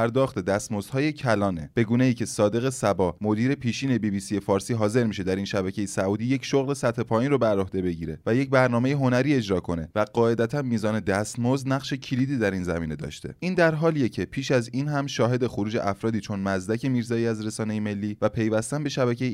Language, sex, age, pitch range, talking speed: Persian, male, 20-39, 100-130 Hz, 200 wpm